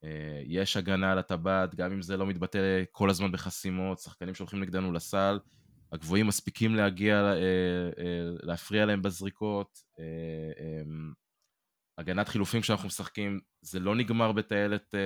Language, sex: Hebrew, male